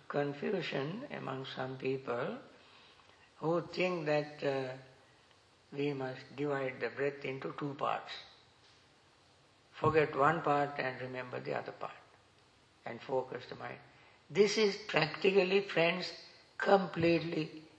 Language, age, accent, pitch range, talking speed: English, 60-79, Indian, 130-165 Hz, 110 wpm